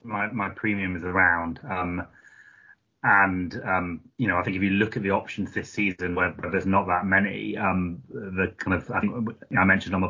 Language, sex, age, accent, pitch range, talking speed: English, male, 30-49, British, 95-110 Hz, 215 wpm